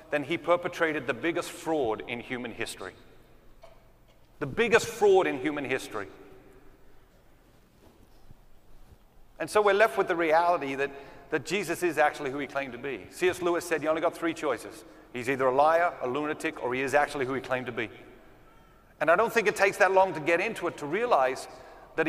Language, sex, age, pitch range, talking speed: English, male, 40-59, 150-220 Hz, 190 wpm